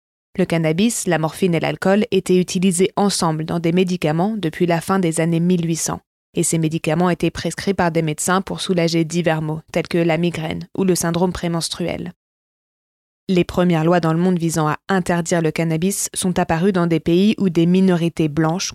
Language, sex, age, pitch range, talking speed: English, female, 20-39, 165-185 Hz, 185 wpm